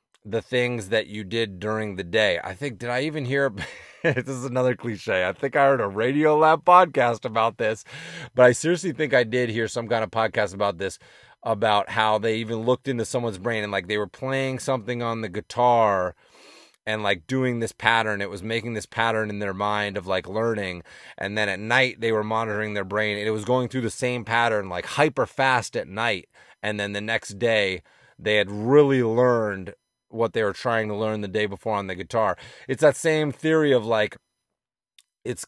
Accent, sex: American, male